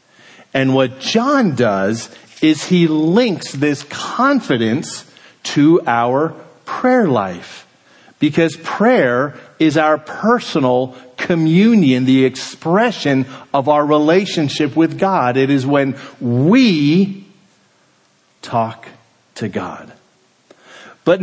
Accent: American